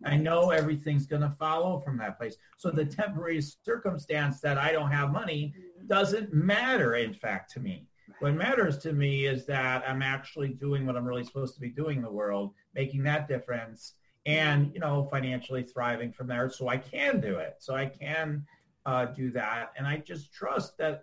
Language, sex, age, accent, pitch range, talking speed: English, male, 40-59, American, 135-165 Hz, 195 wpm